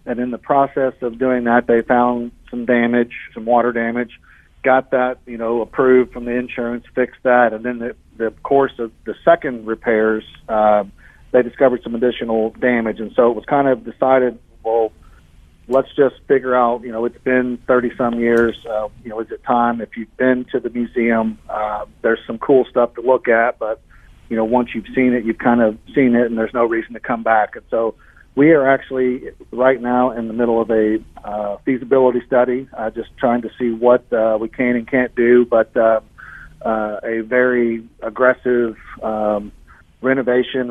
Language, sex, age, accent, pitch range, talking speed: English, male, 40-59, American, 115-125 Hz, 195 wpm